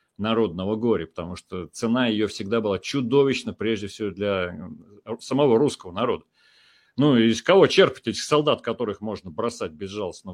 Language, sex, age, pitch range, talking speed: Russian, male, 40-59, 105-145 Hz, 145 wpm